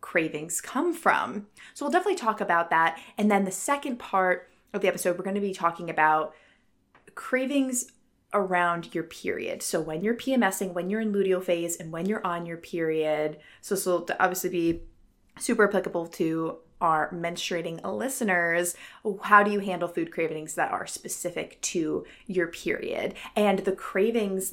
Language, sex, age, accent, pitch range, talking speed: English, female, 20-39, American, 165-225 Hz, 165 wpm